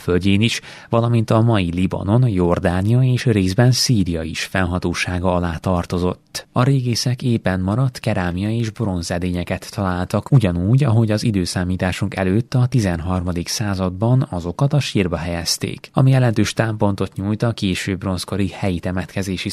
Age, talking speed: 20-39, 130 wpm